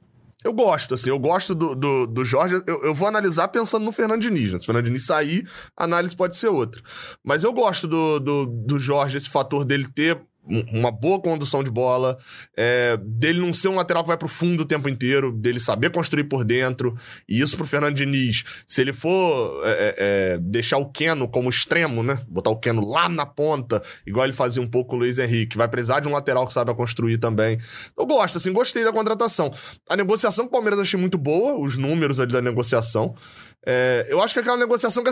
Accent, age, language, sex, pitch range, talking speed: Brazilian, 20-39, Portuguese, male, 130-210 Hz, 215 wpm